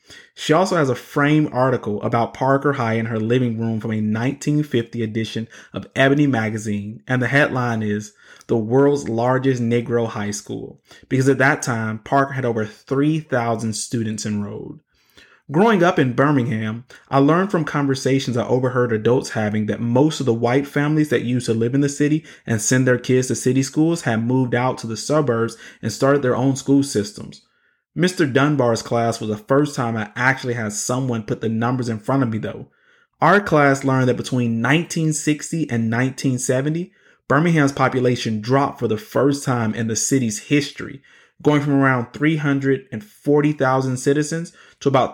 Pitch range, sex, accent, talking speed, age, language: 115-140 Hz, male, American, 170 wpm, 30-49, English